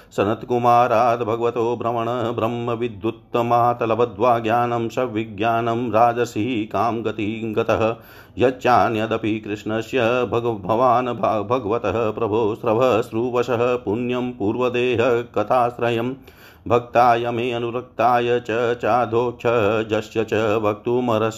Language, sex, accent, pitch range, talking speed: Hindi, male, native, 110-120 Hz, 75 wpm